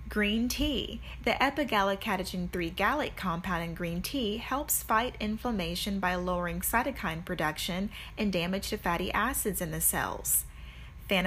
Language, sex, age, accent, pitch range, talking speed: English, female, 30-49, American, 175-230 Hz, 130 wpm